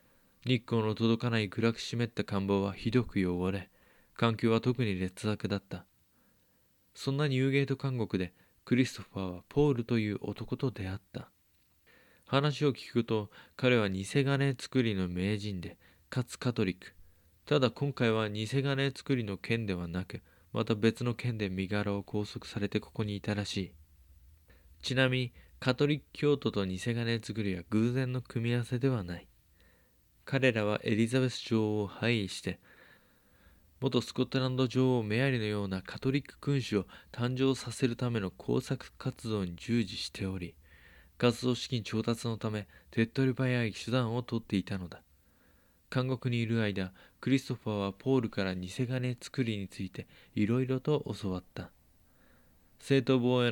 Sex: male